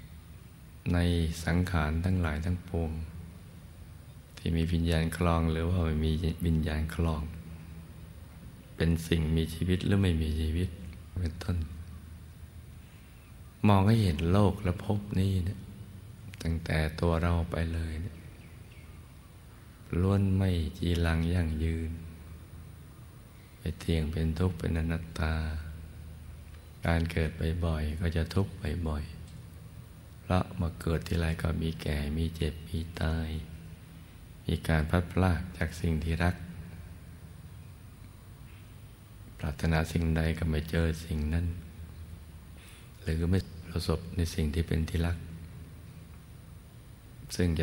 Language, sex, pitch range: Thai, male, 80-90 Hz